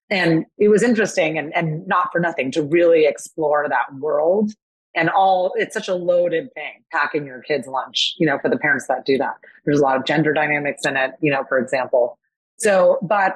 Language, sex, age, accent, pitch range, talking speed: English, female, 30-49, American, 145-185 Hz, 210 wpm